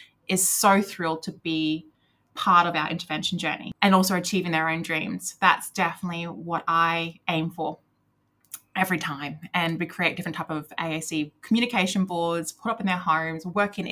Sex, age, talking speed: female, 20-39, 170 wpm